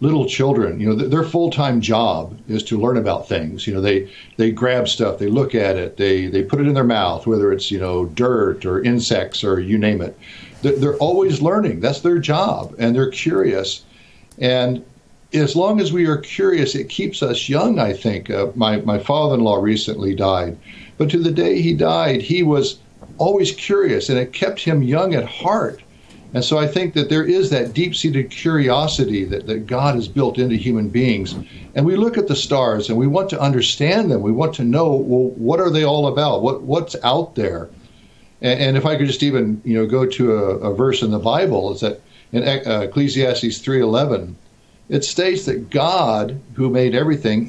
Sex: male